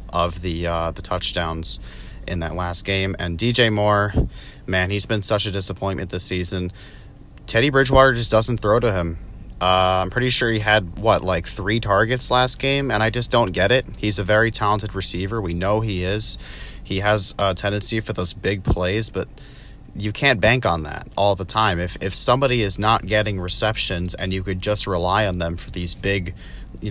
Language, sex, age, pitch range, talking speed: English, male, 30-49, 90-105 Hz, 200 wpm